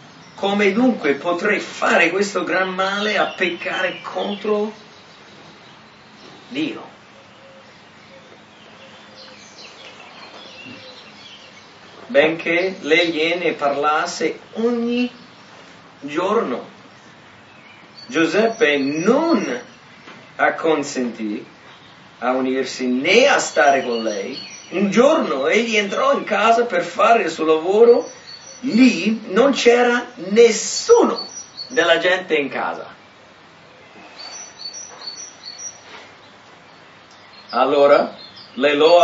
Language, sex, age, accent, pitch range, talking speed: English, male, 40-59, Italian, 150-235 Hz, 75 wpm